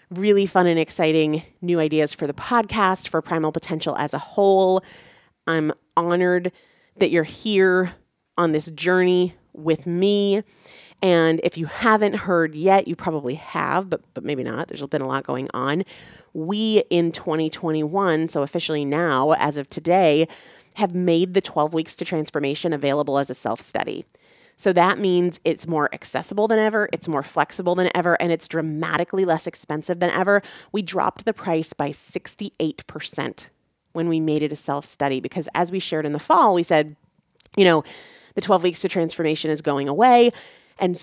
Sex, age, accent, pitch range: female, 30-49, American, 160-200 Hz